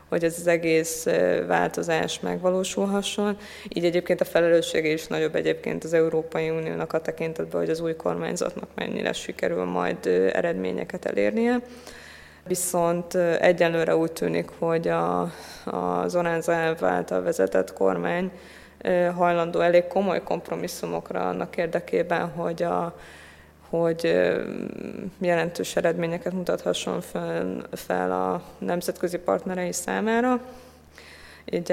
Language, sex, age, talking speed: Hungarian, female, 20-39, 105 wpm